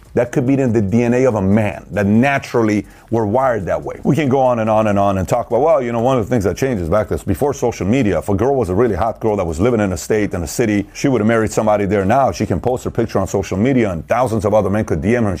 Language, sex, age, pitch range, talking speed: English, male, 40-59, 110-145 Hz, 315 wpm